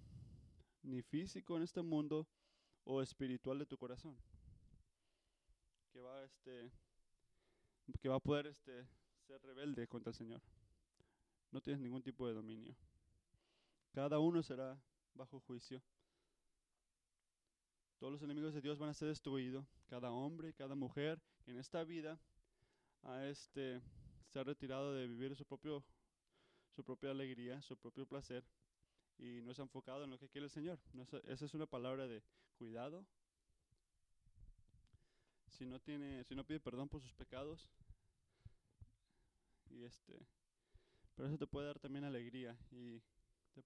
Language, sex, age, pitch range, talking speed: Spanish, male, 20-39, 115-145 Hz, 145 wpm